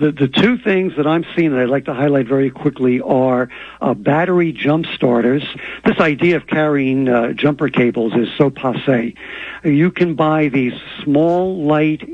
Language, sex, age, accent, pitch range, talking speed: English, male, 60-79, American, 130-155 Hz, 175 wpm